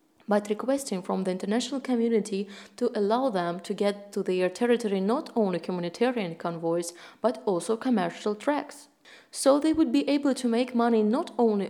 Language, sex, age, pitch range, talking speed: Russian, female, 20-39, 175-230 Hz, 165 wpm